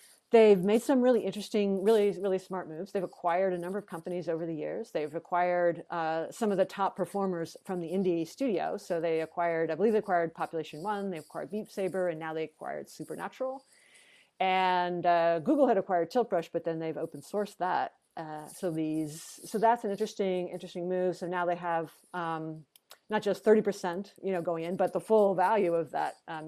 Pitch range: 165-200 Hz